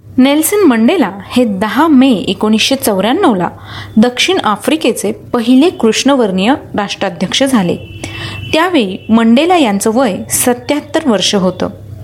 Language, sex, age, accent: Marathi, female, 30-49, native